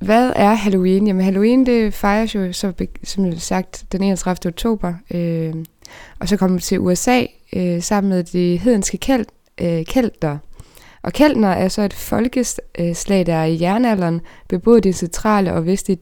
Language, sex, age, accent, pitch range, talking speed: Danish, female, 20-39, native, 170-215 Hz, 165 wpm